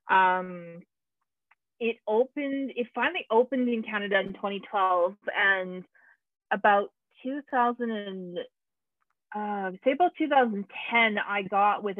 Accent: American